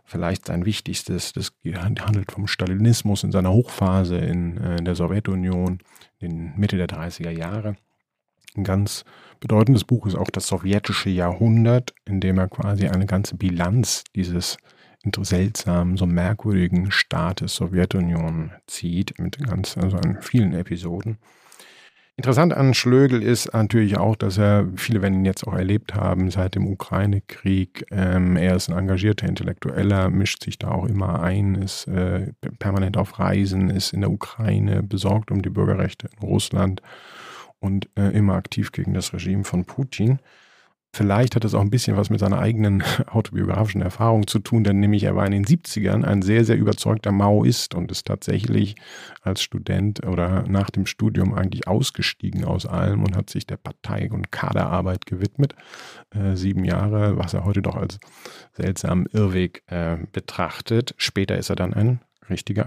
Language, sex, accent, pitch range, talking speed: German, male, German, 95-110 Hz, 155 wpm